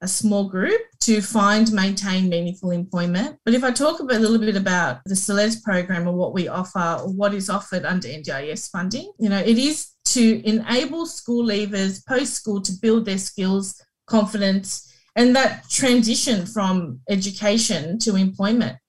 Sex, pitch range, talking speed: female, 190-230 Hz, 160 wpm